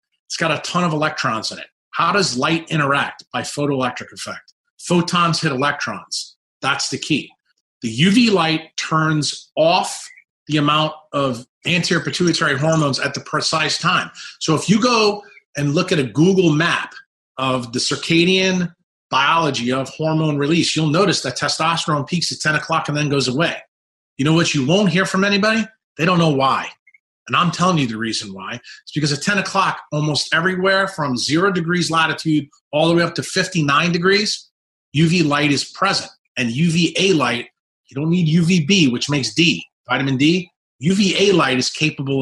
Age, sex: 30-49, male